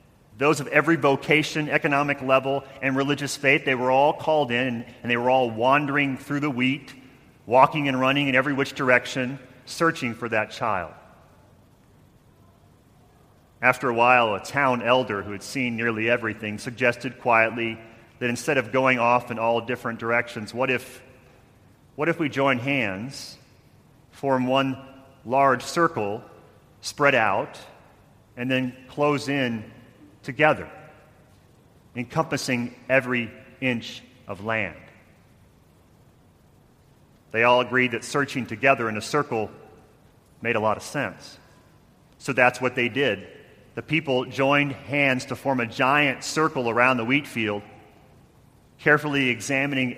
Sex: male